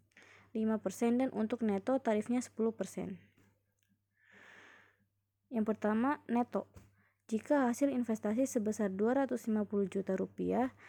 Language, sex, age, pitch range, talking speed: Indonesian, female, 20-39, 185-235 Hz, 90 wpm